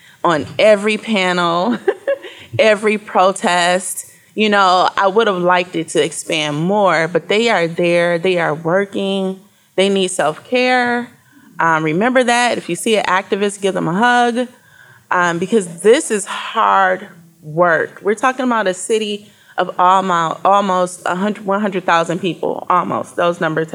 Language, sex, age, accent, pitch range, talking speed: English, female, 20-39, American, 165-215 Hz, 150 wpm